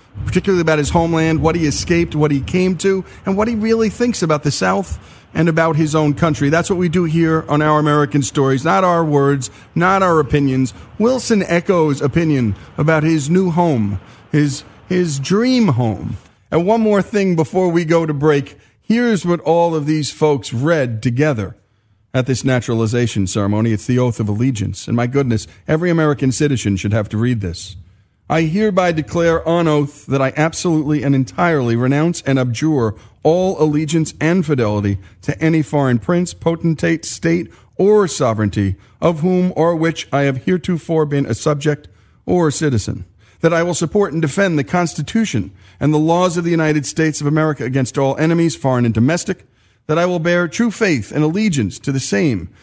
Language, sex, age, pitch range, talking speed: English, male, 40-59, 120-170 Hz, 180 wpm